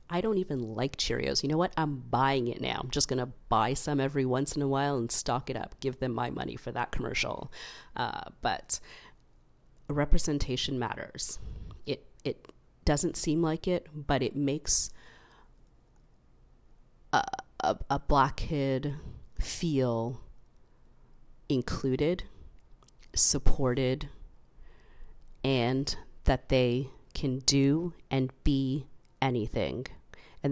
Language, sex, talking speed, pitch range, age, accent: English, female, 125 wpm, 120-140 Hz, 40-59, American